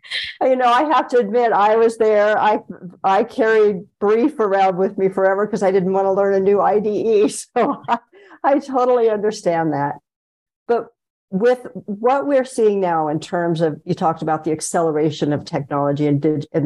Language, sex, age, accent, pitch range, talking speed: English, female, 60-79, American, 160-205 Hz, 185 wpm